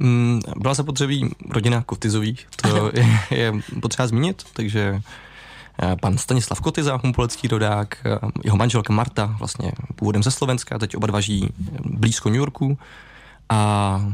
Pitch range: 105-125 Hz